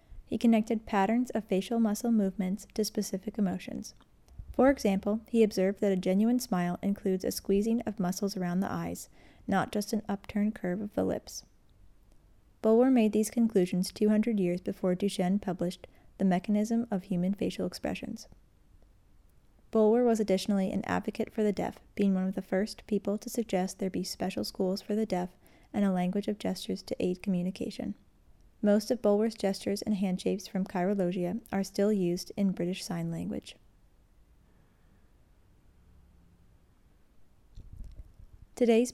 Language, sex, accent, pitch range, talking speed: English, female, American, 180-215 Hz, 150 wpm